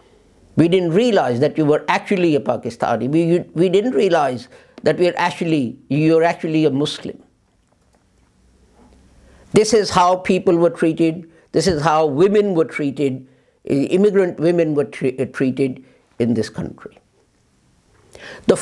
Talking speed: 135 wpm